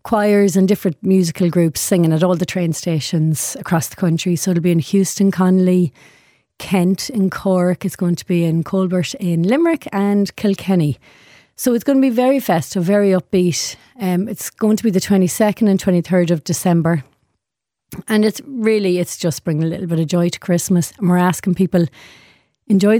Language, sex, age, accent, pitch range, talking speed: English, female, 30-49, Irish, 170-200 Hz, 185 wpm